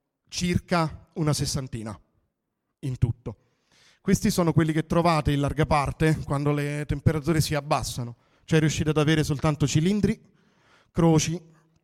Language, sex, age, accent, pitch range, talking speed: Italian, male, 40-59, native, 130-160 Hz, 125 wpm